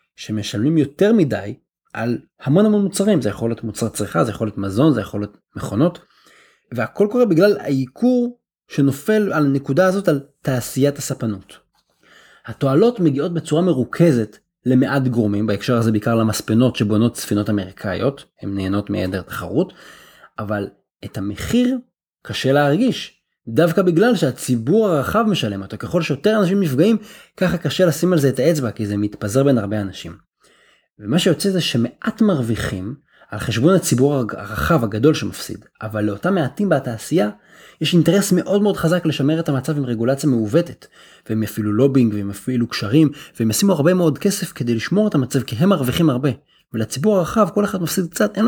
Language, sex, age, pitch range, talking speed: Hebrew, male, 30-49, 110-175 Hz, 160 wpm